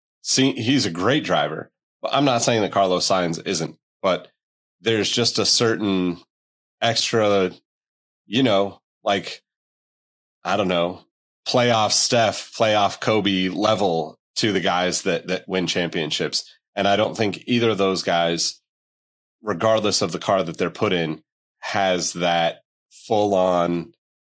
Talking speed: 140 wpm